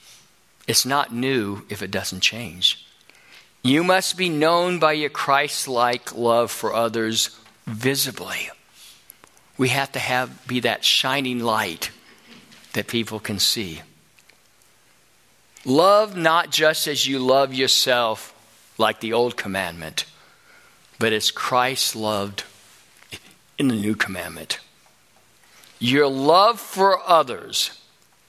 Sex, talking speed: male, 110 wpm